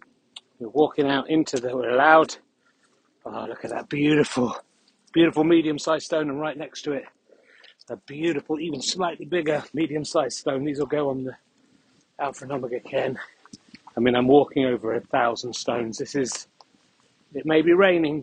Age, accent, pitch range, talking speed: 40-59, British, 135-165 Hz, 165 wpm